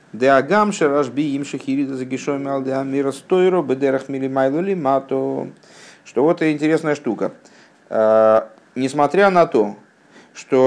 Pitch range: 115-170 Hz